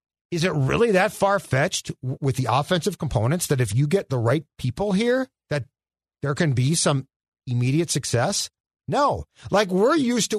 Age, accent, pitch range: 40-59, American, 125-200 Hz